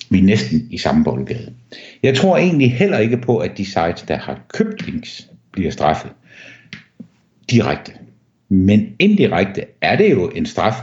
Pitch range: 90-120 Hz